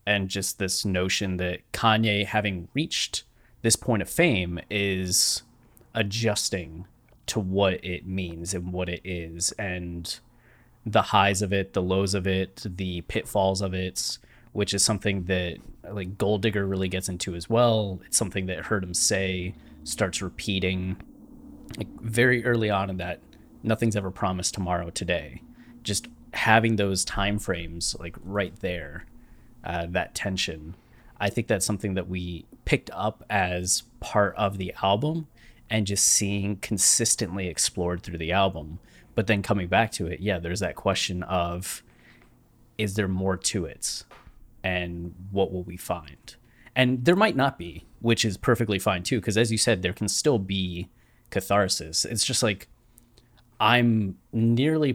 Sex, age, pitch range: male, 20-39, 90-110 Hz